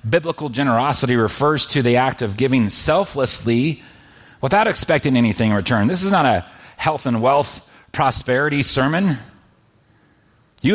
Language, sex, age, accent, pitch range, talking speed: English, male, 40-59, American, 120-165 Hz, 135 wpm